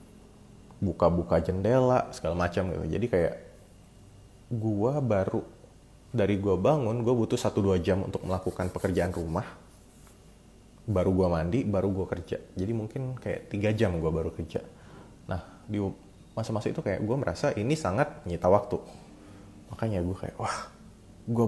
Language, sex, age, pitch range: Indonesian, male, 30-49, 90-110 Hz